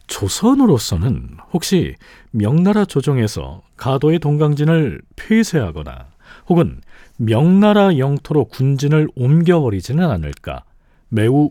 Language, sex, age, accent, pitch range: Korean, male, 40-59, native, 115-165 Hz